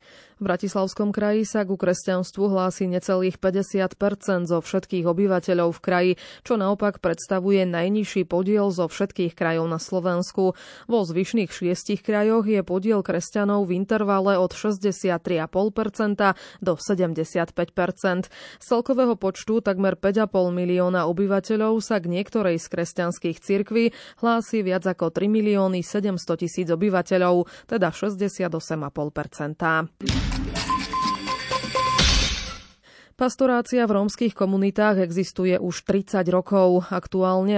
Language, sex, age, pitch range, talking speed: Slovak, female, 20-39, 180-205 Hz, 110 wpm